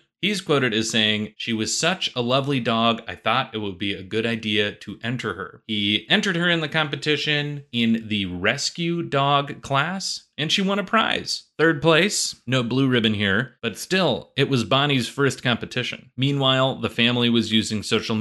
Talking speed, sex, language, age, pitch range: 185 wpm, male, English, 30-49, 110-140 Hz